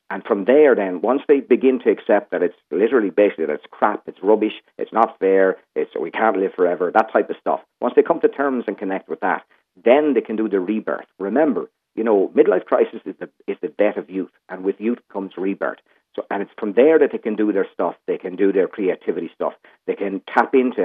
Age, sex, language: 50-69, male, English